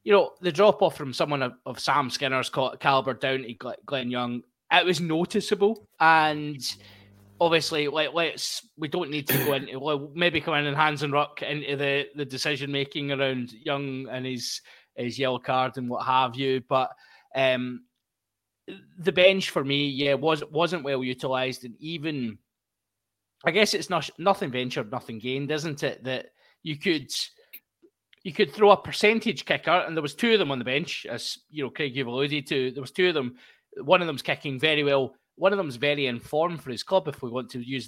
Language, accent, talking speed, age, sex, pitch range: English, British, 195 wpm, 20-39, male, 130-170 Hz